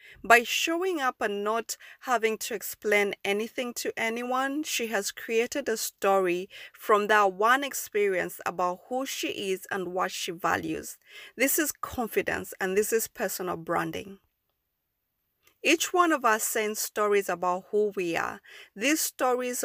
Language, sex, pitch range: English, female, 190-250 Hz